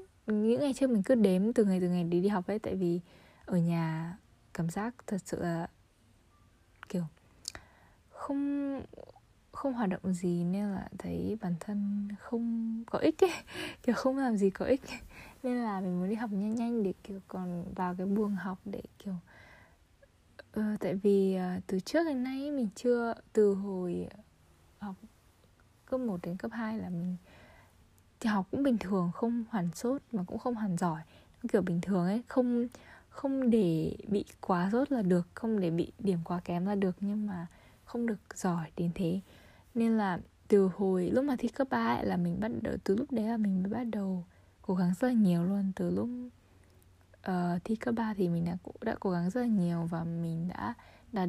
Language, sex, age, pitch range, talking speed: Vietnamese, female, 20-39, 175-225 Hz, 195 wpm